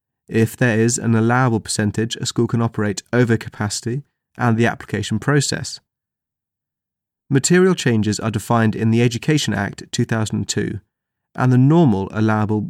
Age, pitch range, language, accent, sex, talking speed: 30-49, 105-130 Hz, English, British, male, 135 wpm